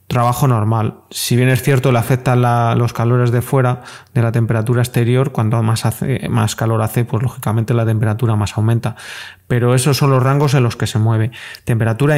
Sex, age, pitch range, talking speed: male, 20-39, 115-130 Hz, 190 wpm